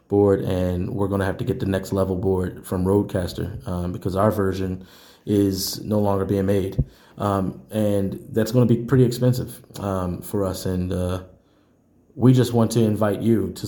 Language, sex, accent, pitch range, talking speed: English, male, American, 95-115 Hz, 185 wpm